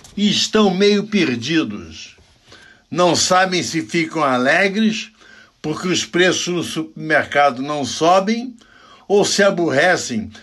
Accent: Brazilian